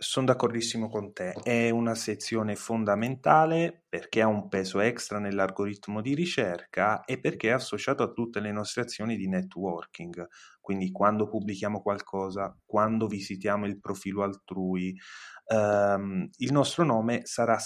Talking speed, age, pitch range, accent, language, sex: 140 wpm, 30-49, 95-125 Hz, native, Italian, male